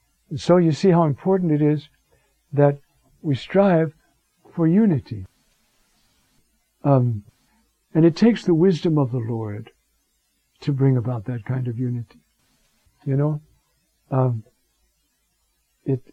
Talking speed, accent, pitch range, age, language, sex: 120 wpm, American, 125-155 Hz, 60-79, English, male